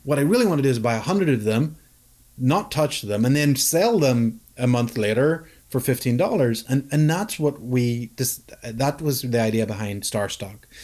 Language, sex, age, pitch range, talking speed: English, male, 30-49, 115-145 Hz, 195 wpm